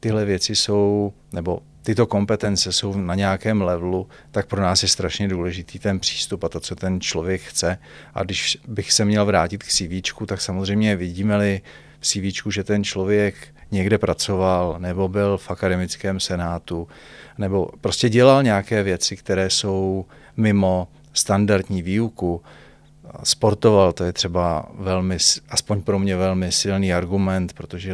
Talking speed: 150 wpm